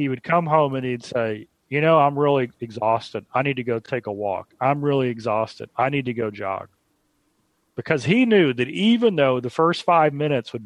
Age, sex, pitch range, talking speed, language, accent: 40-59, male, 120-150 Hz, 215 wpm, English, American